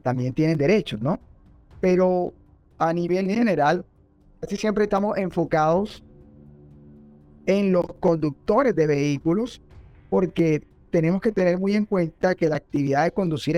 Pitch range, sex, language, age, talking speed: 140-185 Hz, male, Spanish, 30-49, 130 wpm